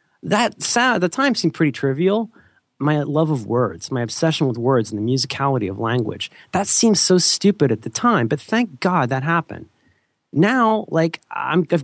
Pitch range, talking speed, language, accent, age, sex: 120-170 Hz, 175 wpm, English, American, 30-49, male